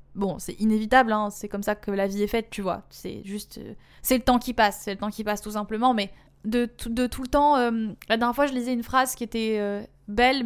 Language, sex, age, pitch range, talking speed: French, female, 20-39, 225-265 Hz, 275 wpm